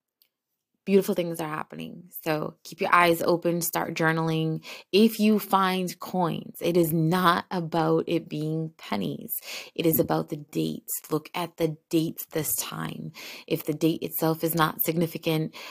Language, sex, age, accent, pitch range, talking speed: English, female, 20-39, American, 150-170 Hz, 155 wpm